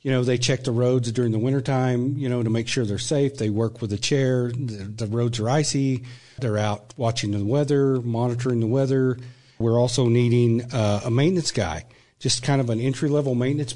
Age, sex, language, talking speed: 40-59, male, English, 210 wpm